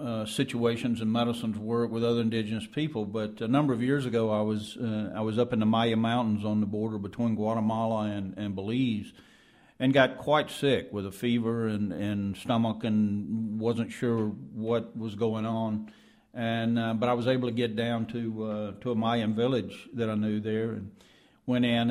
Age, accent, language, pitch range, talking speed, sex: 50-69, American, English, 110-125 Hz, 195 wpm, male